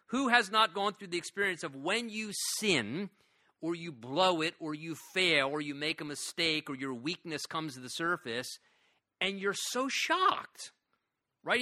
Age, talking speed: 40-59, 180 wpm